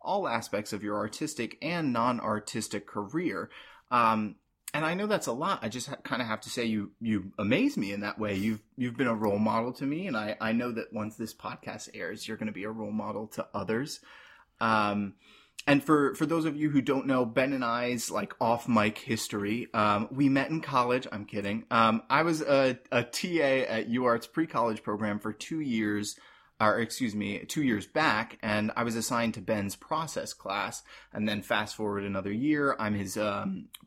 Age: 30-49